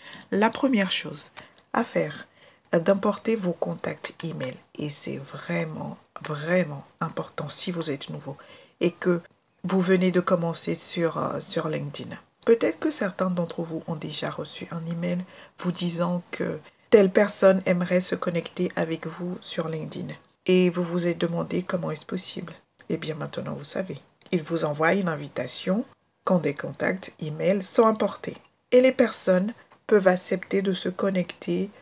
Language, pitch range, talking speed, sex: French, 165-200 Hz, 155 wpm, female